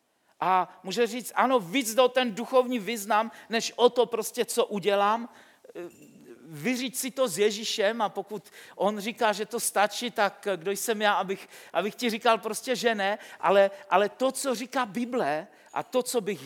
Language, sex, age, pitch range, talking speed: Czech, male, 50-69, 155-220 Hz, 175 wpm